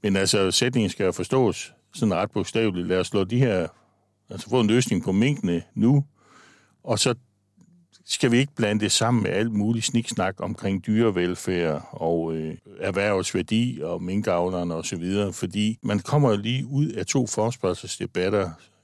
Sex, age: male, 60-79